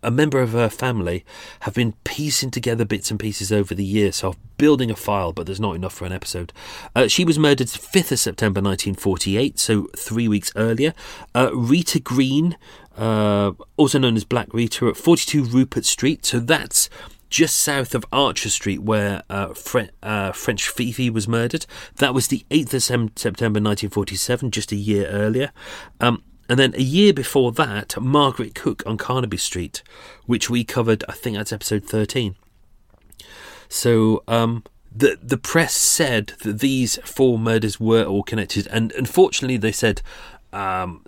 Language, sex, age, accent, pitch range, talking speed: English, male, 40-59, British, 100-130 Hz, 165 wpm